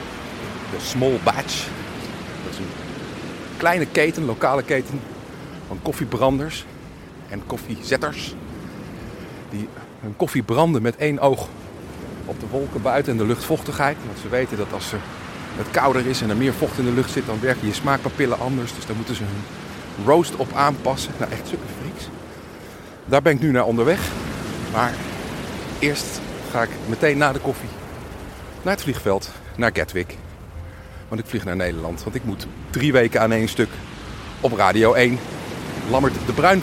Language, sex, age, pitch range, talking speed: Dutch, male, 50-69, 95-130 Hz, 160 wpm